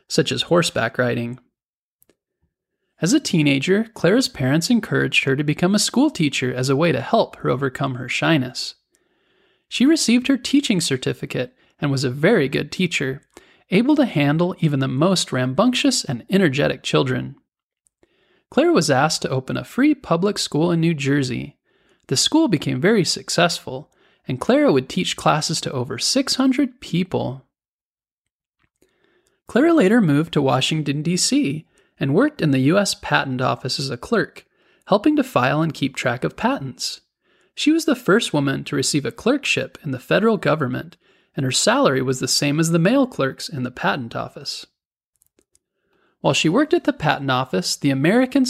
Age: 20-39